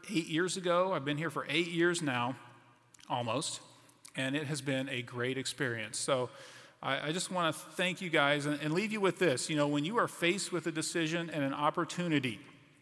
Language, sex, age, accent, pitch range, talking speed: English, male, 40-59, American, 135-175 Hz, 210 wpm